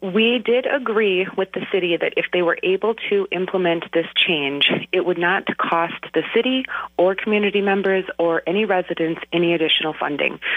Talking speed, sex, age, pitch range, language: 170 wpm, female, 30-49, 160-200 Hz, English